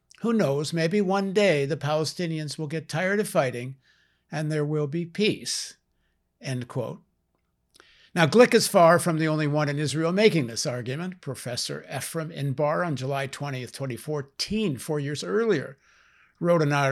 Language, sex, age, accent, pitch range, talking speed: English, male, 60-79, American, 140-180 Hz, 155 wpm